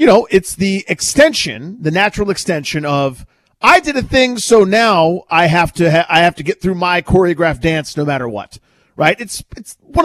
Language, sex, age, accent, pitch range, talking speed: English, male, 40-59, American, 145-205 Hz, 205 wpm